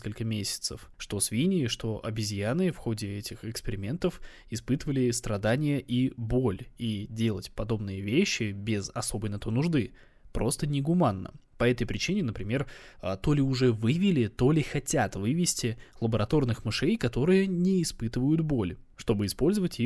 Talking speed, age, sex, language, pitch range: 135 wpm, 20-39, male, Russian, 105-135 Hz